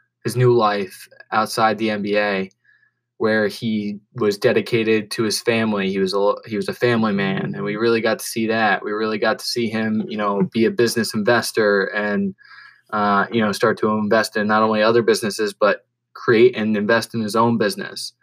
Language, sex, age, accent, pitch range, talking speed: English, male, 20-39, American, 105-115 Hz, 200 wpm